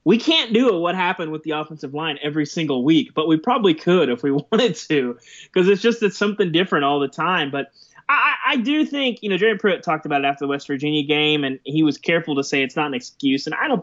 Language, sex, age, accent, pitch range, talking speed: English, male, 20-39, American, 140-175 Hz, 260 wpm